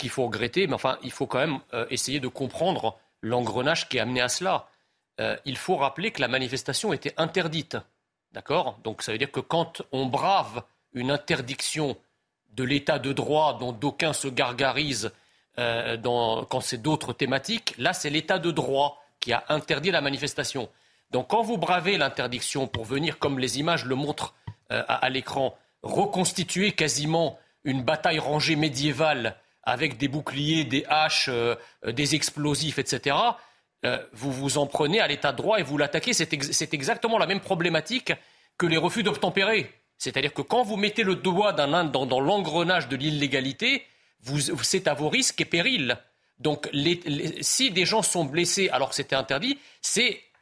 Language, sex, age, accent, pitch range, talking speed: French, male, 40-59, French, 135-185 Hz, 175 wpm